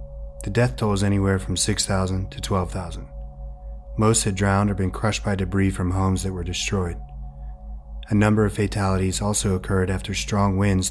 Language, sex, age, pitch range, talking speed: English, male, 30-49, 70-100 Hz, 170 wpm